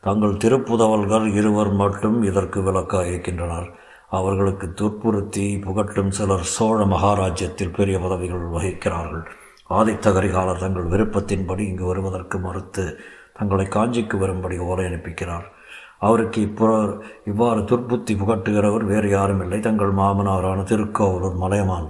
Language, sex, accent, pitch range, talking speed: Tamil, male, native, 95-105 Hz, 105 wpm